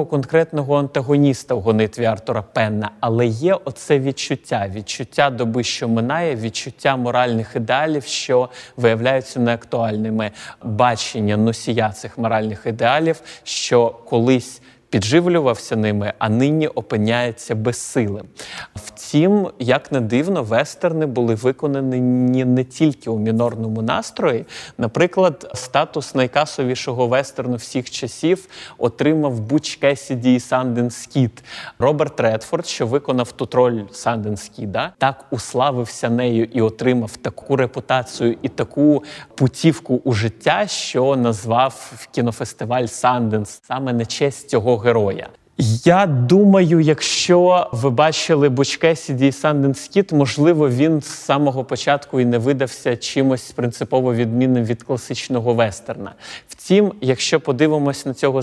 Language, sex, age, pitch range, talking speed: Ukrainian, male, 30-49, 115-145 Hz, 115 wpm